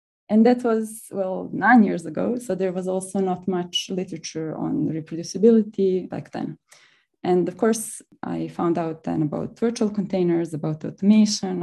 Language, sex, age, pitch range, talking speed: English, female, 20-39, 175-220 Hz, 155 wpm